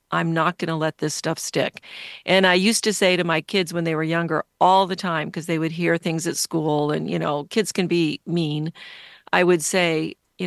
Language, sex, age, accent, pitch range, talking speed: English, female, 50-69, American, 165-190 Hz, 235 wpm